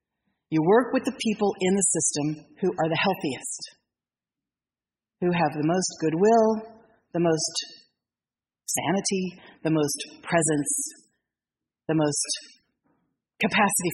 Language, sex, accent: English, female, American